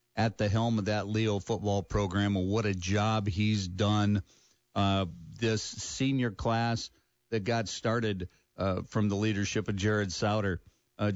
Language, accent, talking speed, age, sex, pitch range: English, American, 155 wpm, 50-69, male, 95-115 Hz